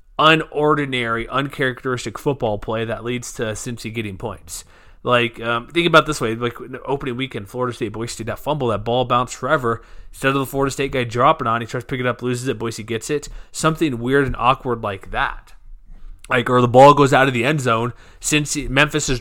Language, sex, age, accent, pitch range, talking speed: English, male, 30-49, American, 110-135 Hz, 210 wpm